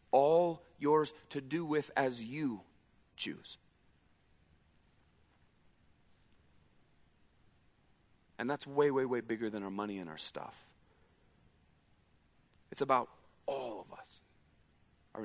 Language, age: English, 40-59